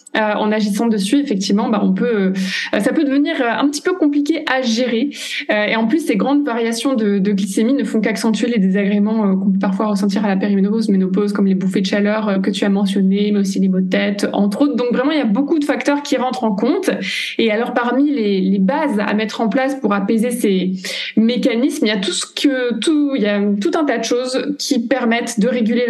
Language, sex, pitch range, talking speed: French, female, 210-280 Hz, 230 wpm